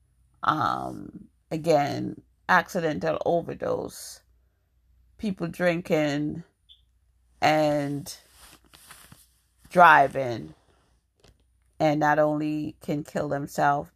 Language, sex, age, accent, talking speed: English, female, 40-59, American, 60 wpm